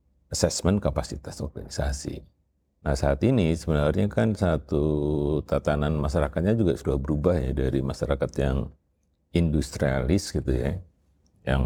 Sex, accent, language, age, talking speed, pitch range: male, native, Indonesian, 50-69, 115 wpm, 70-85 Hz